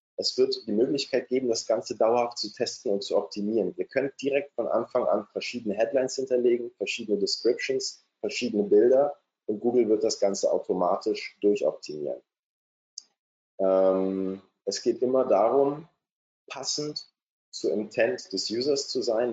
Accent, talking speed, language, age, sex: German, 140 wpm, German, 20-39, male